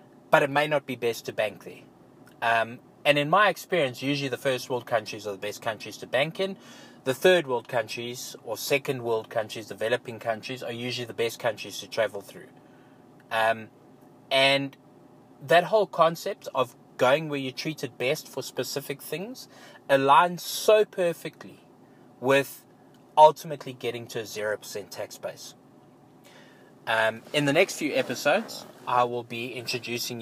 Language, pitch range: English, 115-145 Hz